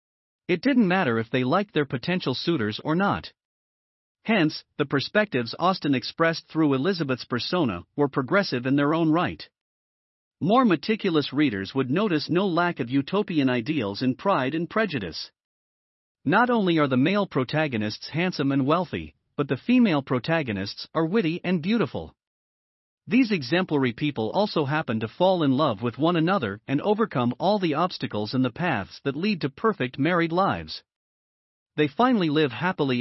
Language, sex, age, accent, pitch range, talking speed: English, male, 40-59, American, 130-185 Hz, 155 wpm